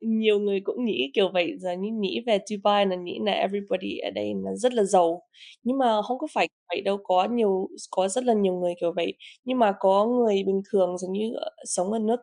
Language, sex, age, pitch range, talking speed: Vietnamese, female, 20-39, 185-215 Hz, 235 wpm